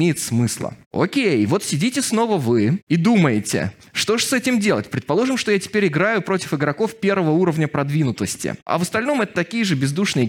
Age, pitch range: 20-39, 125-190 Hz